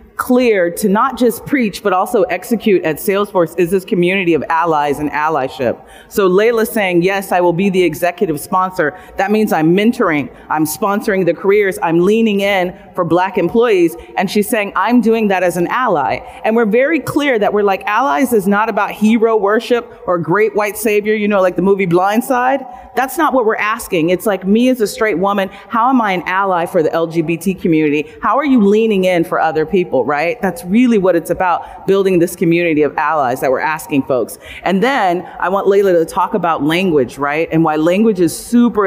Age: 30-49